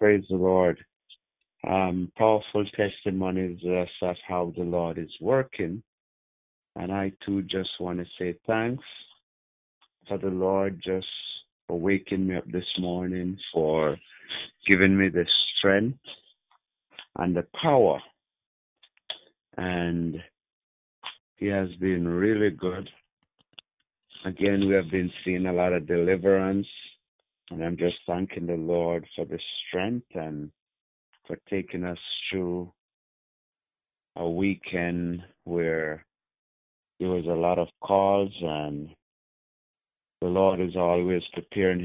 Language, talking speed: English, 120 wpm